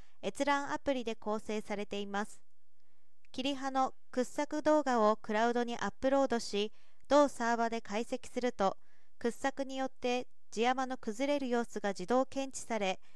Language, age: Japanese, 40-59